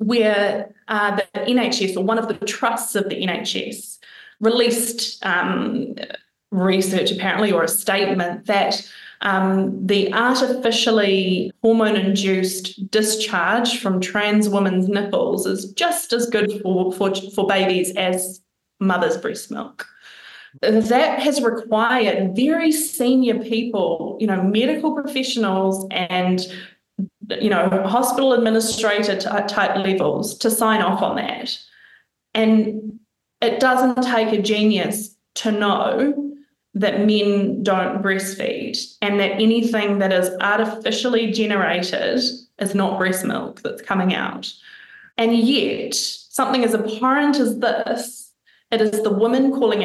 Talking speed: 120 wpm